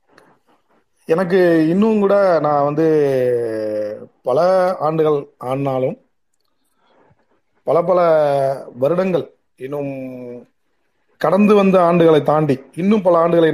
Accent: native